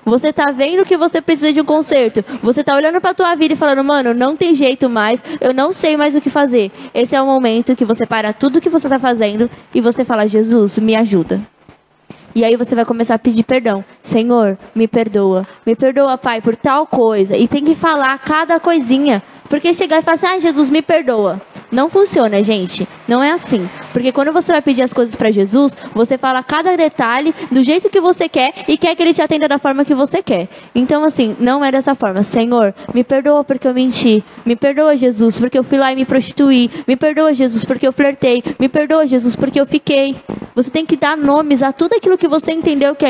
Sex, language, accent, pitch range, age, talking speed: female, Portuguese, Brazilian, 240-300 Hz, 10-29, 225 wpm